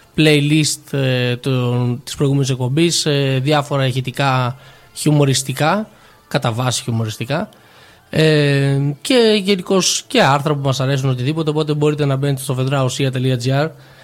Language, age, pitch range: Greek, 20-39, 130-155 Hz